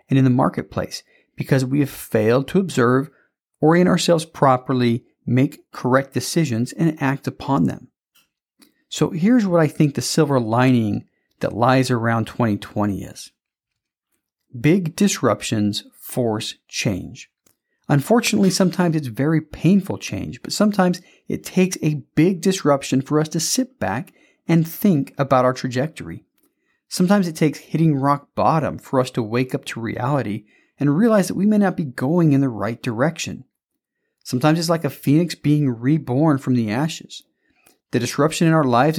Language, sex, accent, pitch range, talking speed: English, male, American, 130-170 Hz, 155 wpm